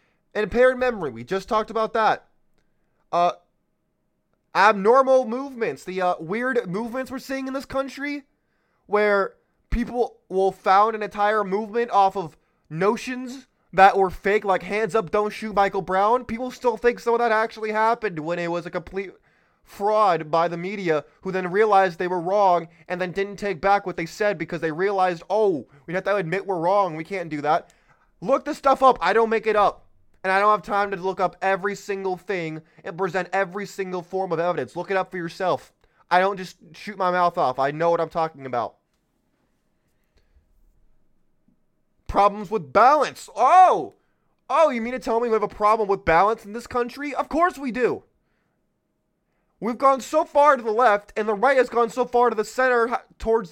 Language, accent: English, American